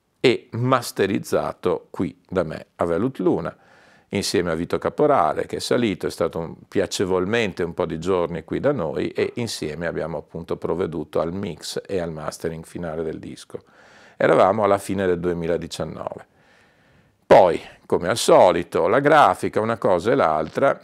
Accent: native